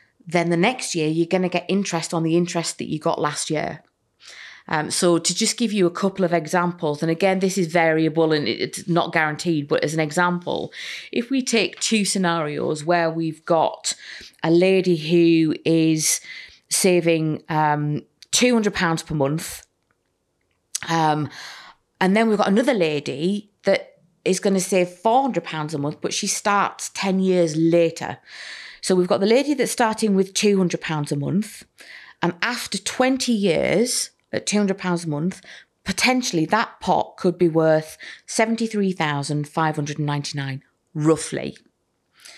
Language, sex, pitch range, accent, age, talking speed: English, female, 160-205 Hz, British, 30-49, 150 wpm